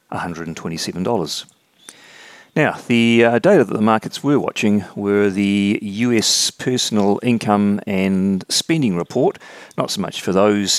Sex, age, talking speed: male, 40-59, 135 wpm